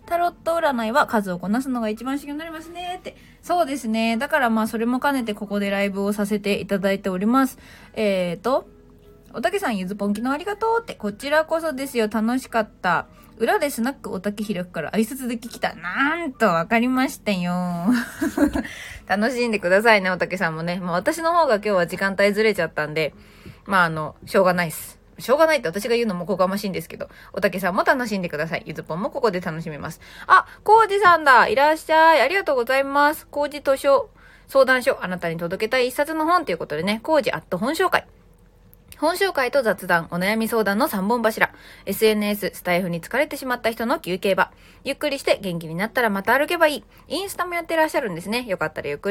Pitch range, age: 195-290 Hz, 20-39